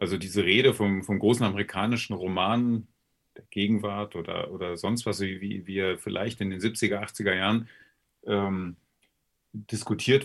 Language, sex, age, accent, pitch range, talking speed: German, male, 40-59, German, 100-115 Hz, 145 wpm